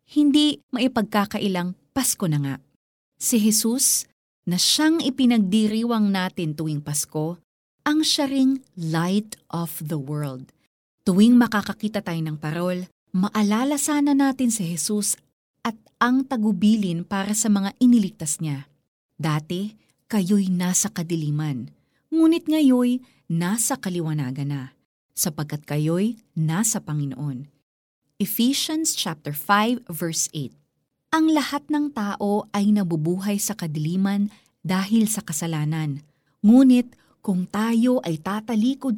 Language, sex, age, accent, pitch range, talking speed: Filipino, female, 30-49, native, 165-245 Hz, 105 wpm